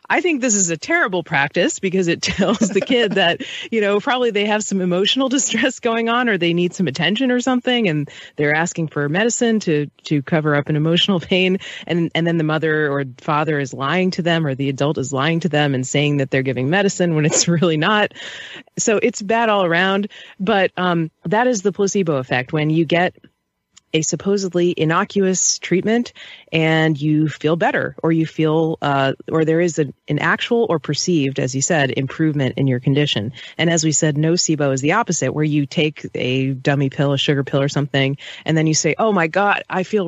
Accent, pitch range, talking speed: American, 150-205 Hz, 210 wpm